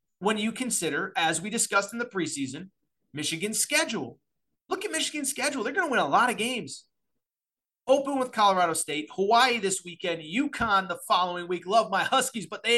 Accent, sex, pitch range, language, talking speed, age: American, male, 165-230 Hz, English, 185 wpm, 30-49